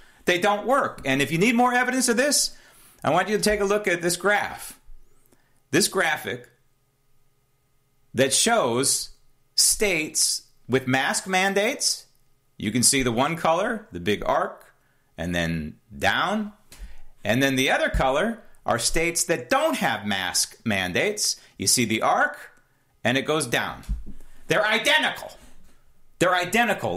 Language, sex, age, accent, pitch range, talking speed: English, male, 40-59, American, 125-205 Hz, 145 wpm